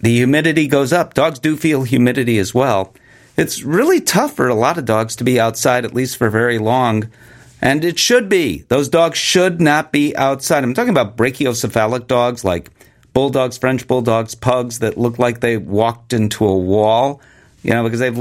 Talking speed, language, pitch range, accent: 190 wpm, English, 120-160 Hz, American